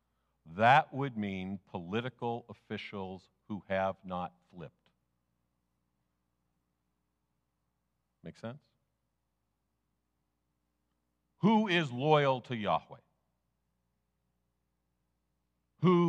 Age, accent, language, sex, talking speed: 50-69, American, English, male, 65 wpm